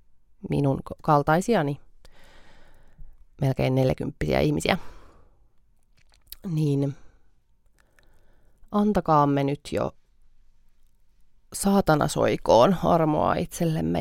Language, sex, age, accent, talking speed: Finnish, female, 30-49, native, 50 wpm